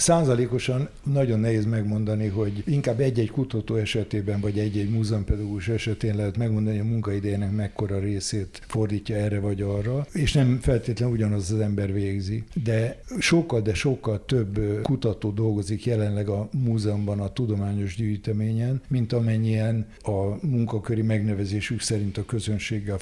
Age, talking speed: 60-79, 135 wpm